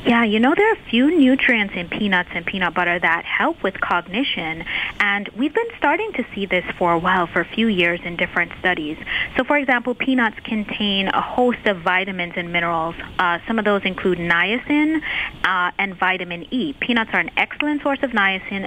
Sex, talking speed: female, 200 wpm